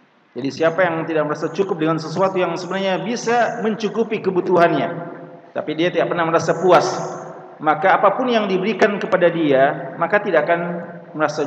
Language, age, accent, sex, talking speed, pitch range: Indonesian, 40-59, native, male, 150 wpm, 150-190 Hz